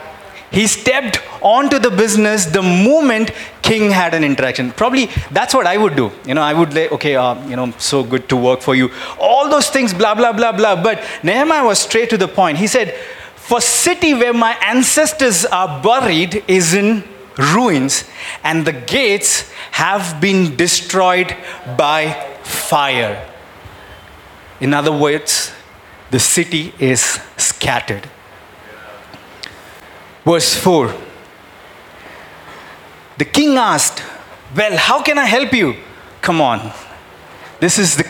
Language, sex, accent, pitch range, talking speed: English, male, Indian, 145-220 Hz, 140 wpm